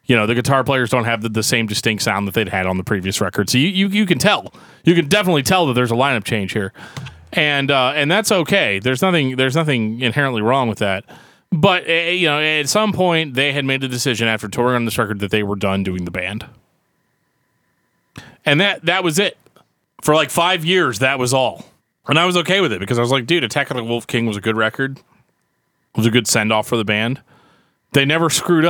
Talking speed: 245 wpm